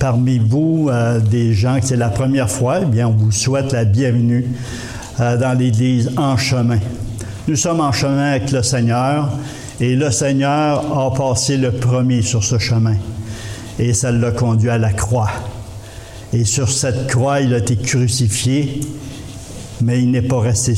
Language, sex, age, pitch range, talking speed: English, male, 60-79, 115-140 Hz, 170 wpm